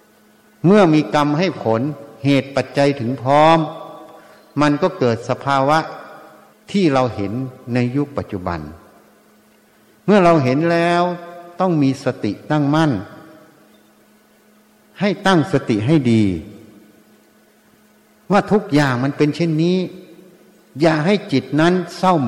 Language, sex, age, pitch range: Thai, male, 60-79, 130-170 Hz